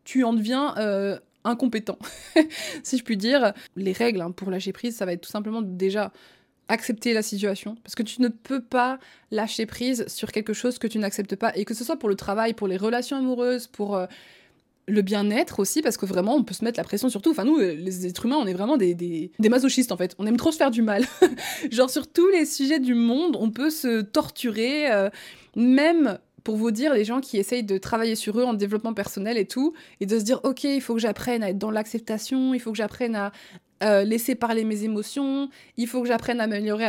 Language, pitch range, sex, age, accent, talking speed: French, 210-265 Hz, female, 20-39, French, 235 wpm